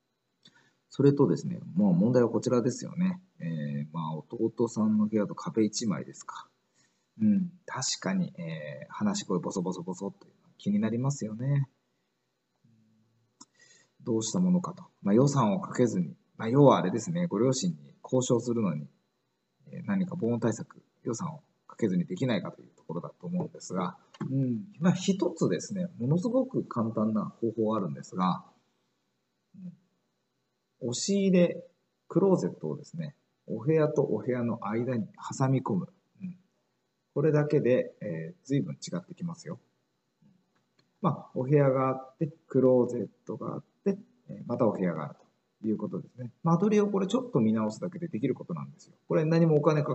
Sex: male